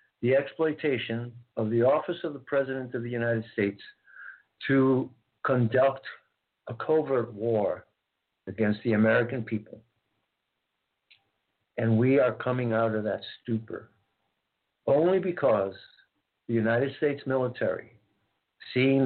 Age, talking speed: 60-79, 115 wpm